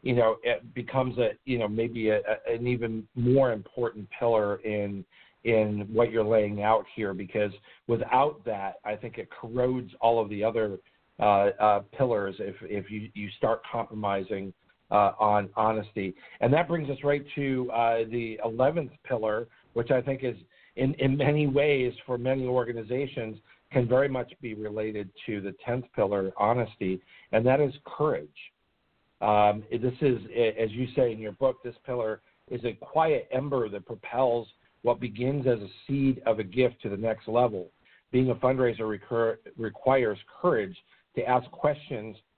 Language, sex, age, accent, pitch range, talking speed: English, male, 50-69, American, 105-125 Hz, 165 wpm